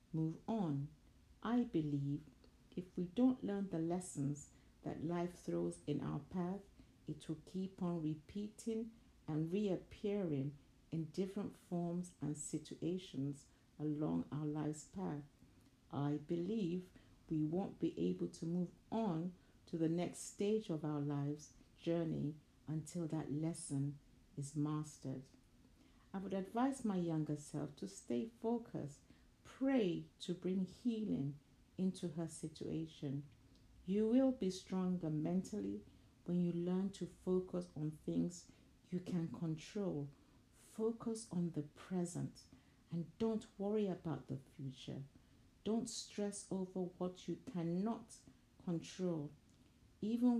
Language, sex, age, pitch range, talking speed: English, female, 60-79, 145-185 Hz, 125 wpm